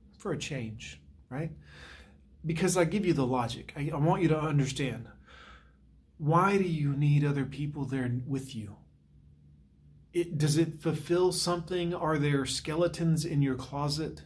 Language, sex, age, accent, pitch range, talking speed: English, male, 30-49, American, 130-165 Hz, 145 wpm